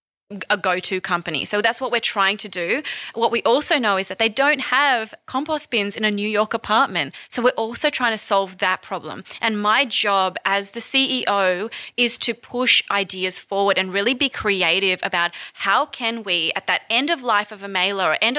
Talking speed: 205 wpm